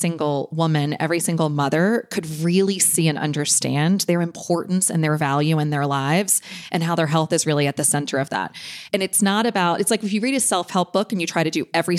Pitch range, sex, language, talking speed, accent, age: 160-210 Hz, female, English, 235 wpm, American, 30-49